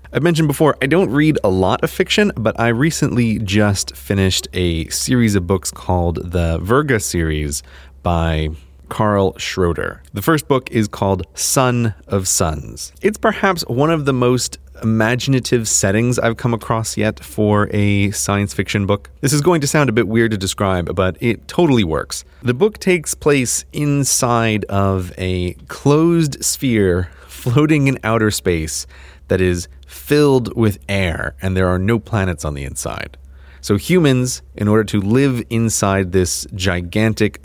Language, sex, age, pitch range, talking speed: English, male, 30-49, 90-120 Hz, 160 wpm